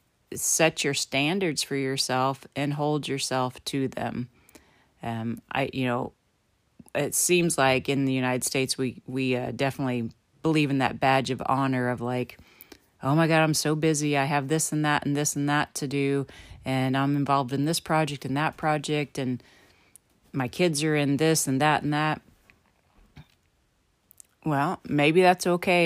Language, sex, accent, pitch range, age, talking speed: English, female, American, 130-155 Hz, 30-49, 170 wpm